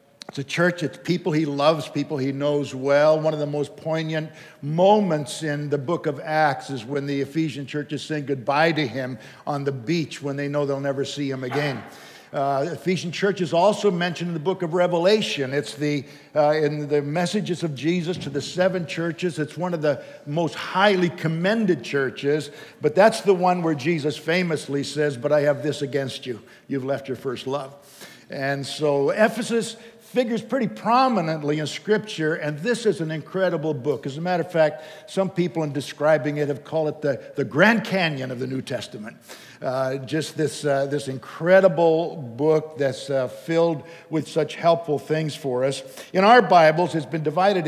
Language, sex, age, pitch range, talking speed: English, male, 60-79, 145-180 Hz, 190 wpm